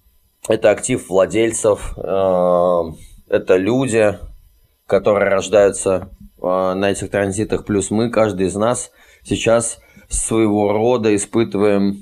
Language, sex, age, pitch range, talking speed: Russian, male, 20-39, 90-110 Hz, 95 wpm